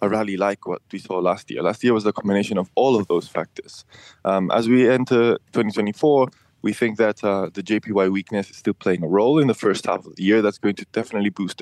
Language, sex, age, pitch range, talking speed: English, male, 20-39, 100-115 Hz, 245 wpm